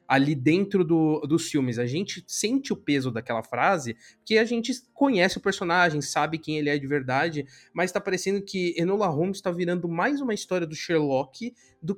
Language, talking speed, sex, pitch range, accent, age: Portuguese, 190 wpm, male, 150-200 Hz, Brazilian, 20-39